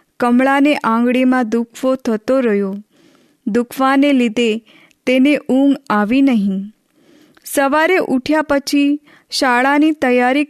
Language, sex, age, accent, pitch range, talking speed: Hindi, female, 20-39, native, 235-280 Hz, 85 wpm